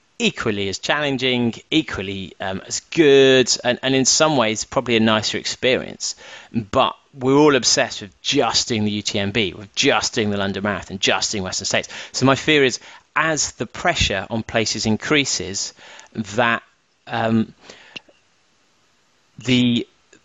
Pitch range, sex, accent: 105-125 Hz, male, British